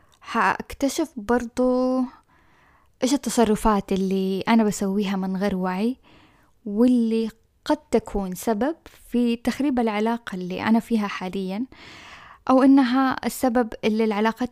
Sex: female